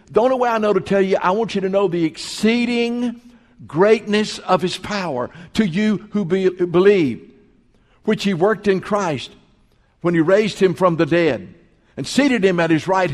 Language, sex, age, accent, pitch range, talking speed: English, male, 60-79, American, 155-210 Hz, 185 wpm